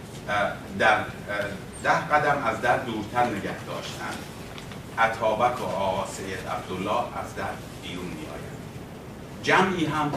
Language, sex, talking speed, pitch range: Persian, male, 100 wpm, 105-140 Hz